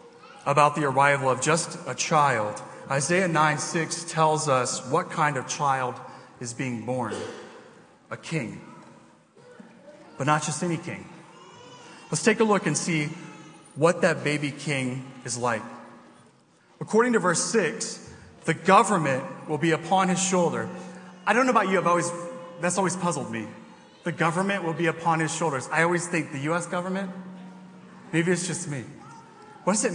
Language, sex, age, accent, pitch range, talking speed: English, male, 30-49, American, 135-175 Hz, 160 wpm